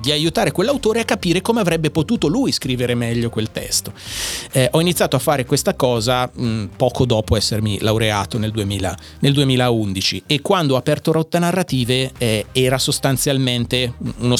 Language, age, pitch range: Italian, 30-49, 115-150 Hz